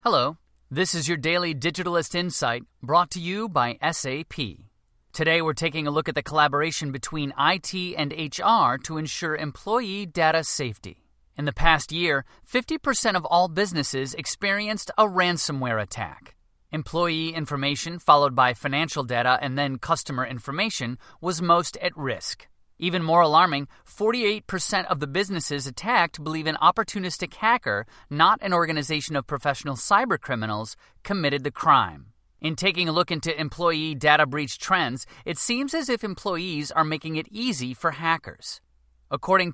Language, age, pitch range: English, 30-49, 140-180 Hz